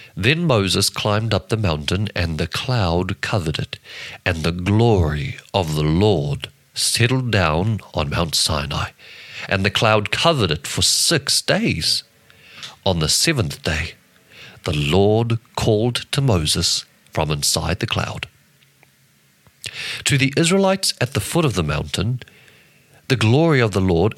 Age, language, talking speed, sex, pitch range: 50-69, English, 140 wpm, male, 90-130 Hz